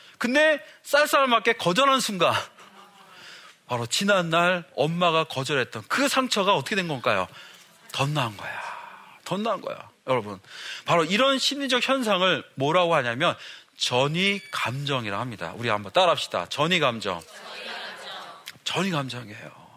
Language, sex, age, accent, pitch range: Korean, male, 40-59, native, 160-260 Hz